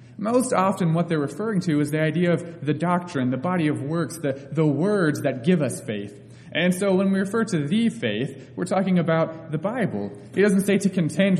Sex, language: male, English